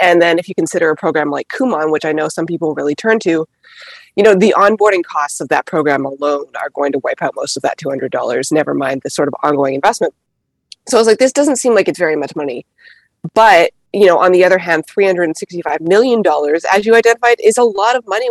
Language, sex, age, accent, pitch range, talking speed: English, female, 20-39, American, 155-215 Hz, 235 wpm